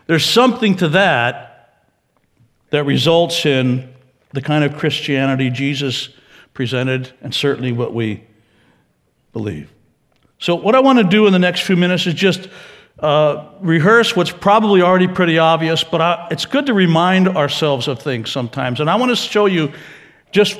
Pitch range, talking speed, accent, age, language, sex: 140-195 Hz, 155 wpm, American, 60-79, English, male